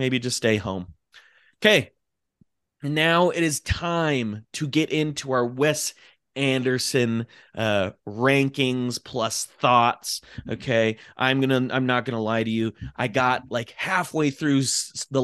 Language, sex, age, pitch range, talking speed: English, male, 30-49, 105-135 Hz, 140 wpm